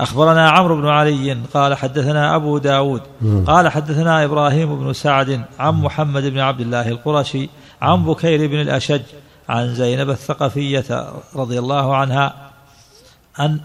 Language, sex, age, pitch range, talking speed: Arabic, male, 50-69, 135-150 Hz, 130 wpm